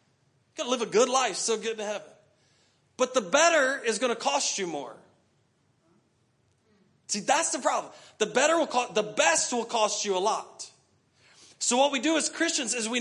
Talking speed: 200 wpm